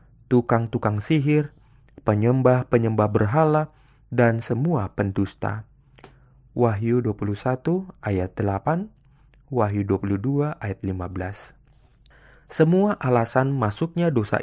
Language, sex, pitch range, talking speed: Indonesian, male, 105-140 Hz, 80 wpm